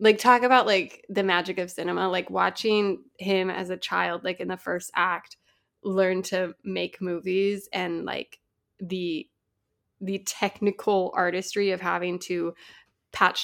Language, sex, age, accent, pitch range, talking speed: English, female, 20-39, American, 190-245 Hz, 145 wpm